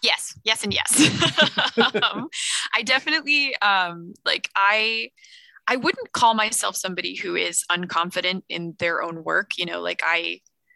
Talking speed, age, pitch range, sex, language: 145 wpm, 20-39, 175-220 Hz, female, English